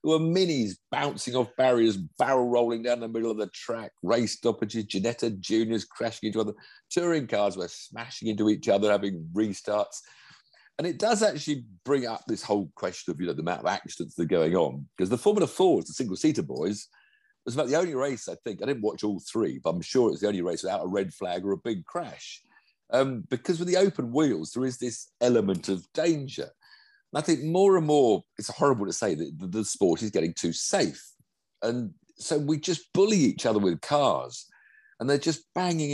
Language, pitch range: English, 110-160 Hz